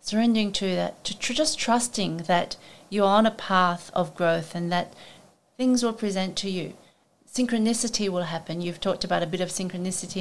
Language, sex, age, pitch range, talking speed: English, female, 40-59, 175-200 Hz, 190 wpm